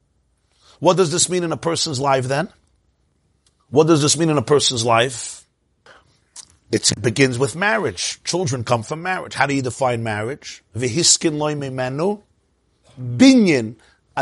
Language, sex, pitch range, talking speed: English, male, 135-195 Hz, 135 wpm